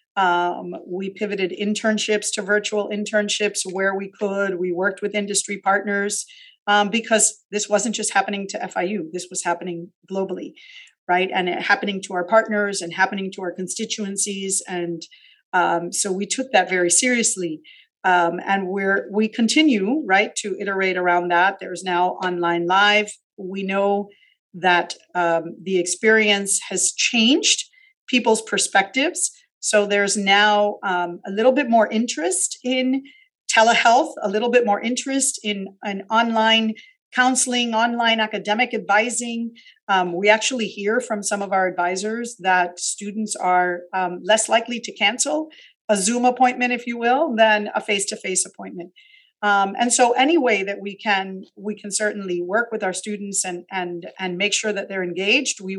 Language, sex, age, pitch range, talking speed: English, female, 40-59, 185-225 Hz, 155 wpm